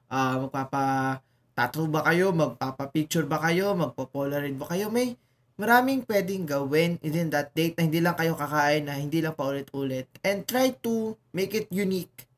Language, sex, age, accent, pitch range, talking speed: Filipino, male, 20-39, native, 135-185 Hz, 170 wpm